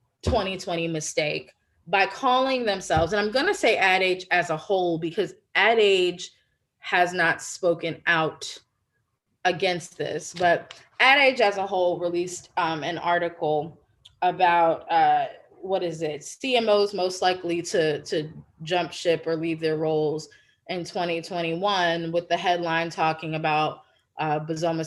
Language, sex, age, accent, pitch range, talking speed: English, female, 20-39, American, 160-195 Hz, 135 wpm